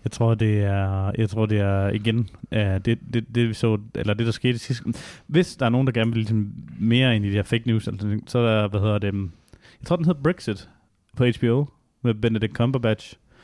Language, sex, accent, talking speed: Danish, male, native, 230 wpm